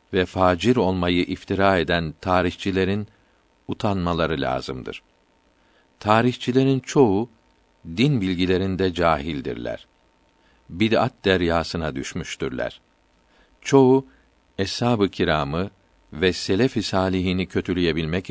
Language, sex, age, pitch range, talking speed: Turkish, male, 50-69, 85-105 Hz, 75 wpm